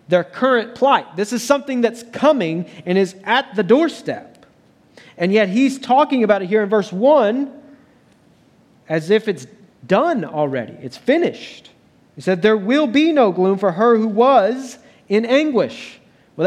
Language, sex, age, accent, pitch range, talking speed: English, male, 40-59, American, 170-245 Hz, 160 wpm